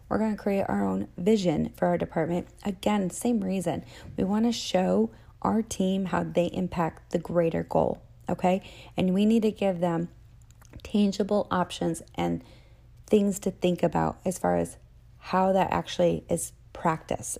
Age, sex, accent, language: 30-49, female, American, English